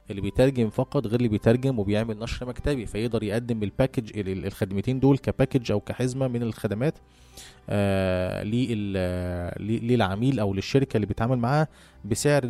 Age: 20-39